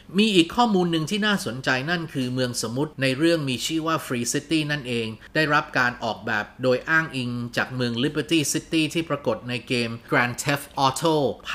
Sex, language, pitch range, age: male, Thai, 120-150 Hz, 30-49